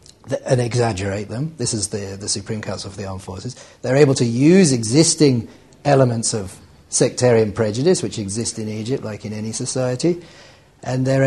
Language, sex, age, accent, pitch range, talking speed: English, male, 40-59, British, 105-130 Hz, 170 wpm